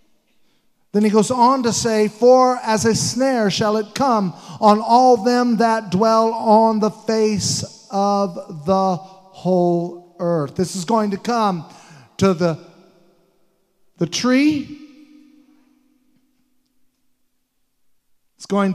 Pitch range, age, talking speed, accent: 165-225 Hz, 50-69, 115 wpm, American